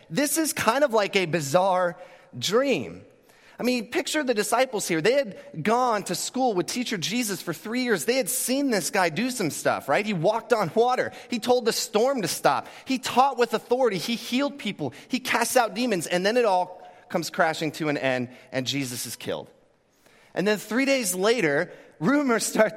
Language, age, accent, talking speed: English, 30-49, American, 200 wpm